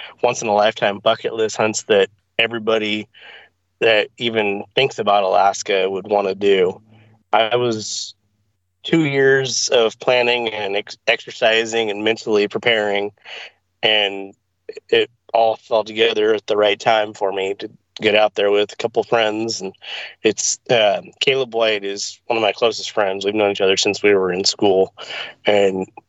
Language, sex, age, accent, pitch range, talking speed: English, male, 30-49, American, 100-120 Hz, 160 wpm